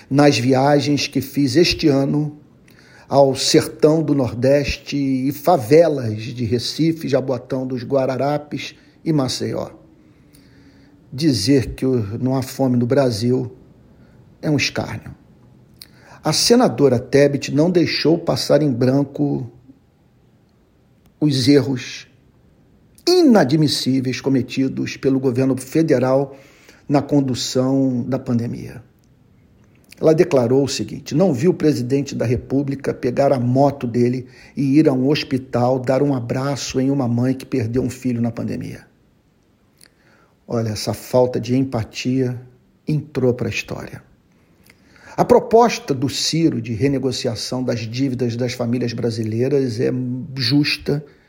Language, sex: Portuguese, male